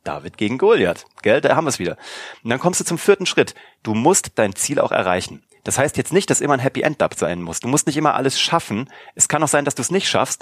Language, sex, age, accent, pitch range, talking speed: German, male, 30-49, German, 115-145 Hz, 275 wpm